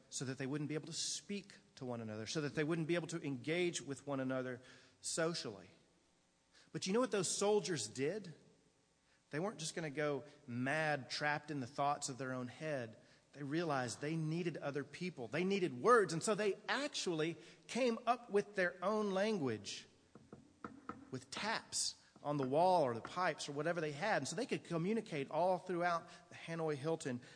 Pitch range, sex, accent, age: 140-180 Hz, male, American, 40-59